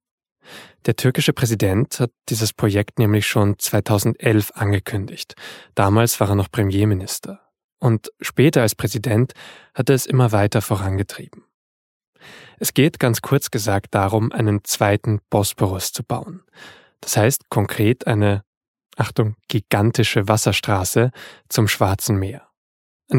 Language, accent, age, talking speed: German, German, 10-29, 120 wpm